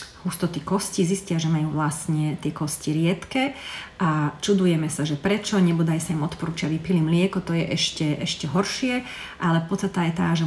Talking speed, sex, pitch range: 170 wpm, female, 160-190 Hz